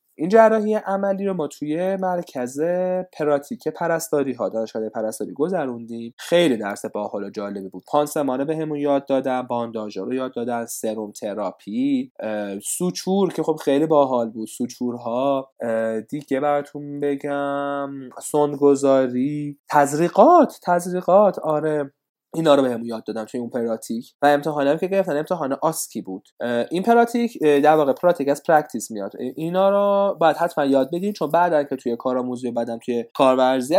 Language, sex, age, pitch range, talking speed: Persian, male, 20-39, 120-170 Hz, 145 wpm